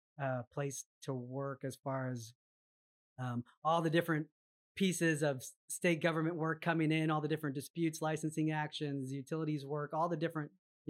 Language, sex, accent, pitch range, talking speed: English, male, American, 130-155 Hz, 165 wpm